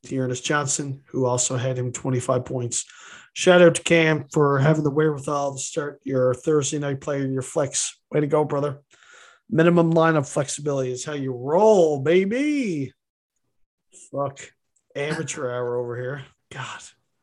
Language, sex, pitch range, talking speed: English, male, 140-205 Hz, 155 wpm